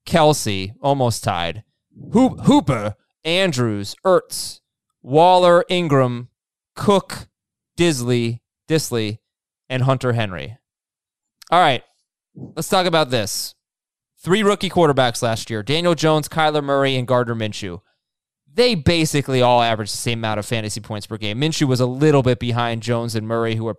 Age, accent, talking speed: 20-39, American, 140 wpm